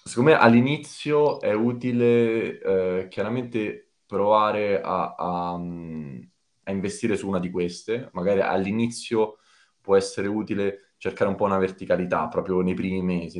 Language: Italian